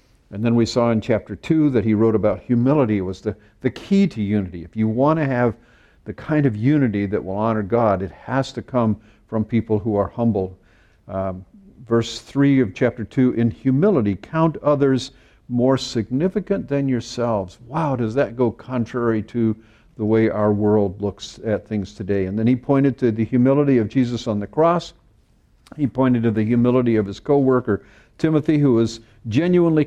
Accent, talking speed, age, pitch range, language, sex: American, 185 wpm, 50-69, 105-135 Hz, English, male